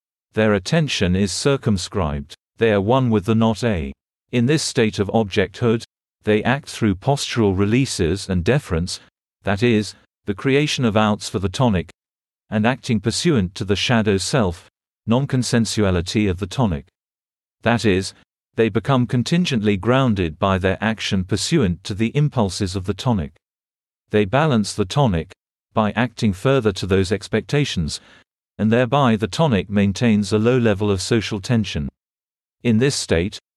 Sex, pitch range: male, 100-120 Hz